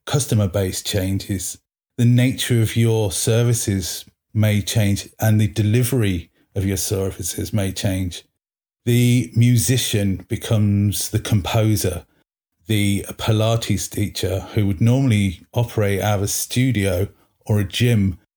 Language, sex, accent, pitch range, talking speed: English, male, British, 100-120 Hz, 120 wpm